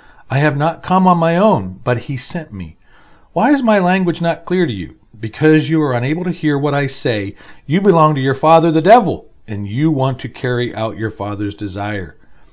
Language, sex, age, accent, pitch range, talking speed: English, male, 40-59, American, 105-165 Hz, 210 wpm